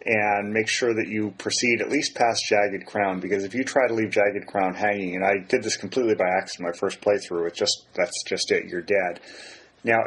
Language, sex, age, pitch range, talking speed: English, male, 30-49, 100-115 Hz, 225 wpm